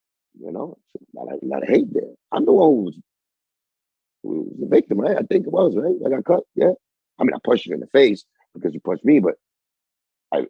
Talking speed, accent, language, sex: 240 wpm, American, English, male